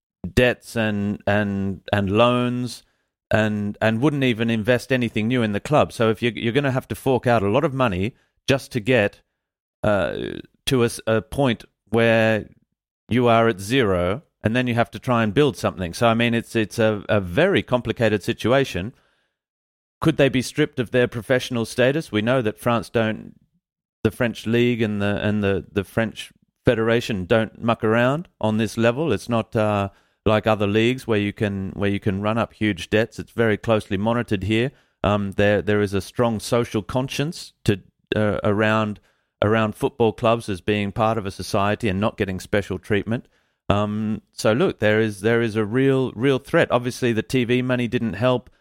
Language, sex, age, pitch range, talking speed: English, male, 40-59, 105-125 Hz, 190 wpm